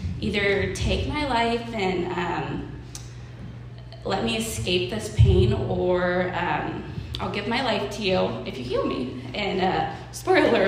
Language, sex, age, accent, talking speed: English, female, 20-39, American, 145 wpm